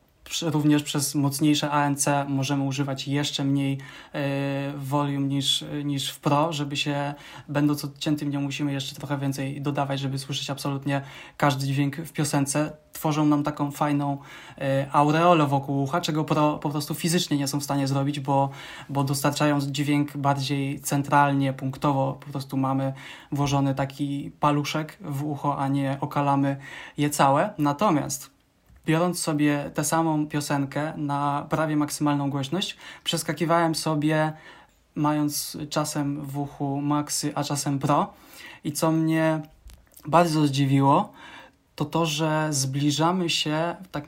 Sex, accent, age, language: male, native, 20-39, Polish